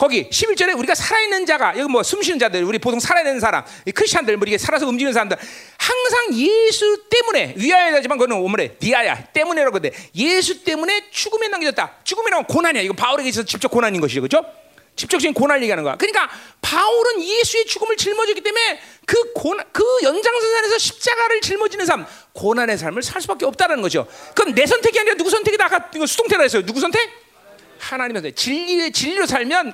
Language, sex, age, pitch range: Korean, male, 40-59, 290-435 Hz